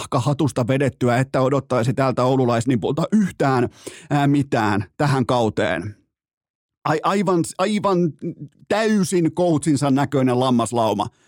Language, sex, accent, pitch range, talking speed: Finnish, male, native, 125-175 Hz, 95 wpm